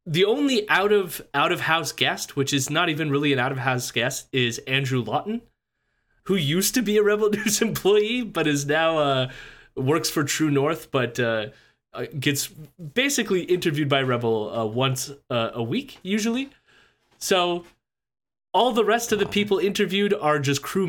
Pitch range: 135-205 Hz